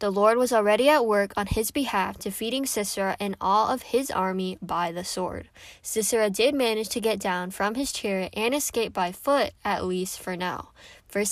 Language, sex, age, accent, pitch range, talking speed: English, female, 10-29, American, 185-230 Hz, 195 wpm